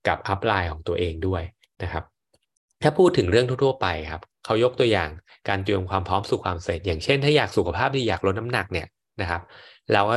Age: 20-39